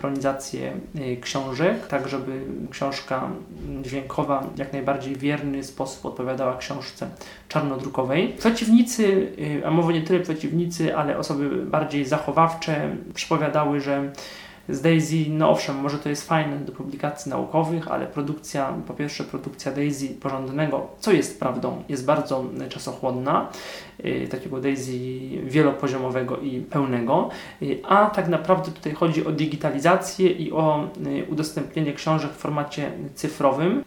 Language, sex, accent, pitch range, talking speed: Polish, male, native, 135-170 Hz, 120 wpm